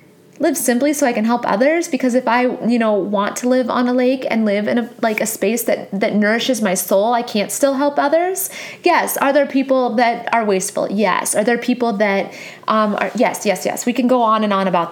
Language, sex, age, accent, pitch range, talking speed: English, female, 20-39, American, 225-300 Hz, 235 wpm